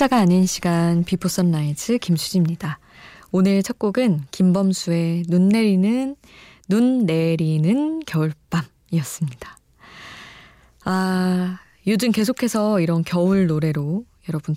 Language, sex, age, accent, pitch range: Korean, female, 20-39, native, 160-200 Hz